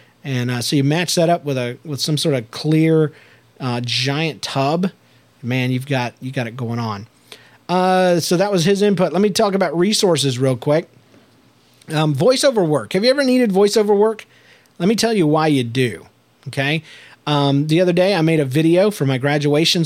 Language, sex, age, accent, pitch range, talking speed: English, male, 40-59, American, 140-180 Hz, 200 wpm